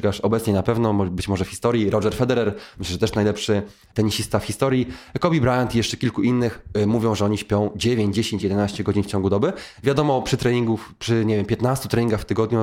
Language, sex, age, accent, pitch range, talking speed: Polish, male, 20-39, native, 105-125 Hz, 205 wpm